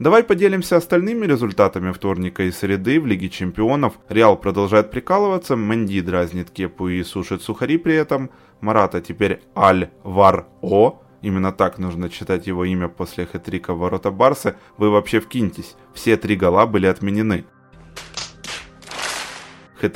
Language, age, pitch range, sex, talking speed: Ukrainian, 20-39, 95-135 Hz, male, 135 wpm